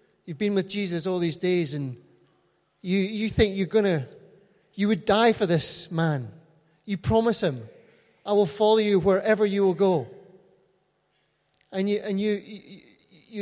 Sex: male